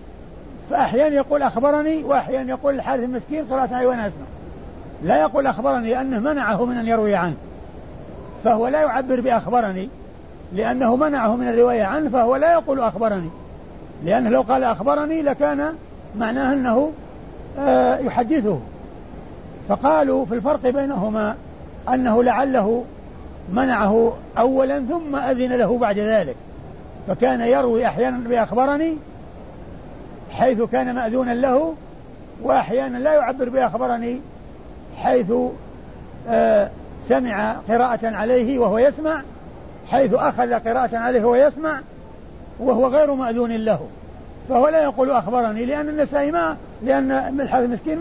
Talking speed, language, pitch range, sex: 115 wpm, Arabic, 230-275 Hz, male